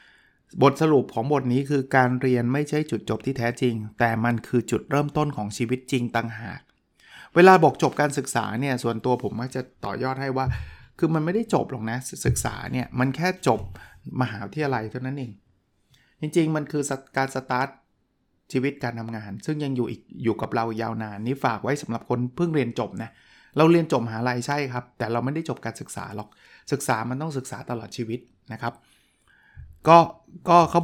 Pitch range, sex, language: 120-150 Hz, male, Thai